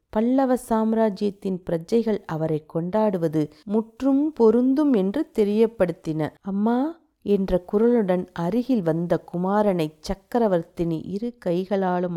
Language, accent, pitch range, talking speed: Tamil, native, 180-250 Hz, 90 wpm